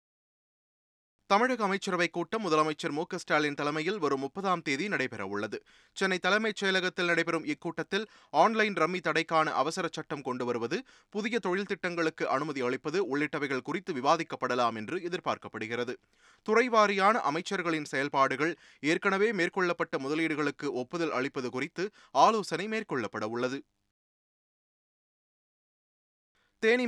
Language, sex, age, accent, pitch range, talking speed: Tamil, male, 20-39, native, 145-190 Hz, 105 wpm